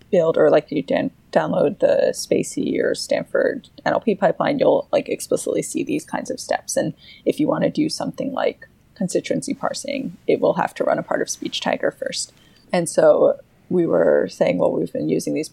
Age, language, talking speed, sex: 20-39, English, 195 wpm, female